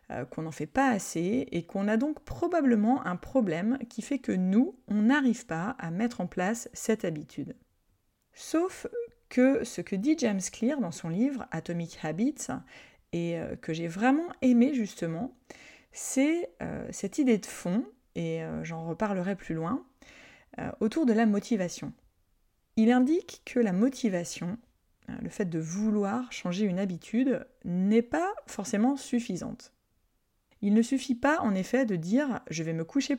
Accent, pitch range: French, 185-255 Hz